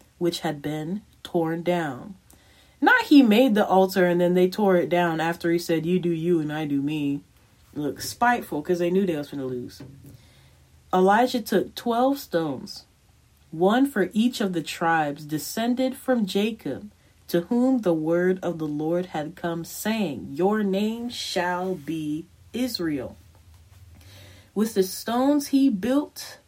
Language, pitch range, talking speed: English, 155-235 Hz, 155 wpm